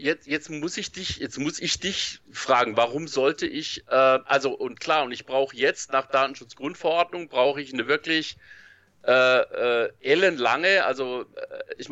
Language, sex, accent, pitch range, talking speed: German, male, German, 115-150 Hz, 165 wpm